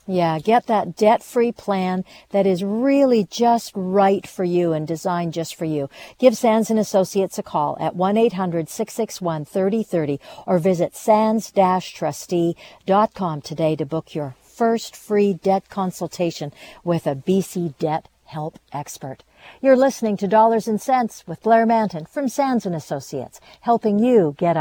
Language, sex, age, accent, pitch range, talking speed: English, female, 60-79, American, 180-230 Hz, 140 wpm